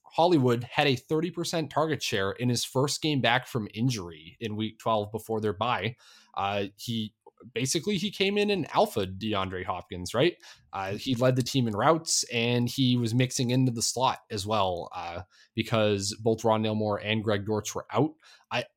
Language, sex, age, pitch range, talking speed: English, male, 20-39, 105-130 Hz, 180 wpm